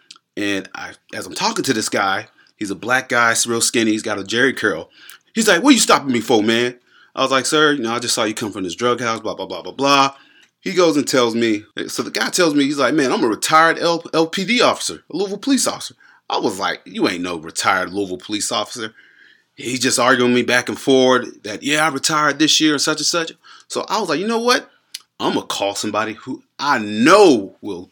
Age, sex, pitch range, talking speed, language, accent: 30-49, male, 105-150 Hz, 240 wpm, English, American